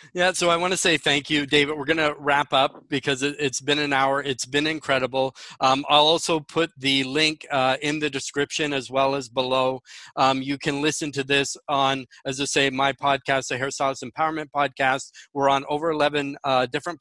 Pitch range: 140-155 Hz